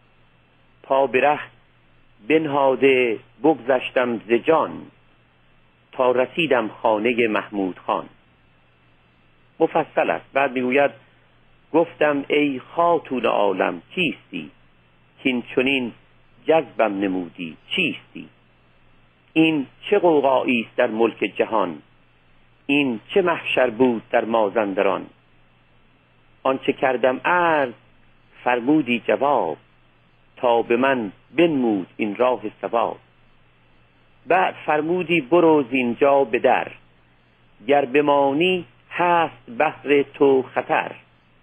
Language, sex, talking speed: Persian, male, 85 wpm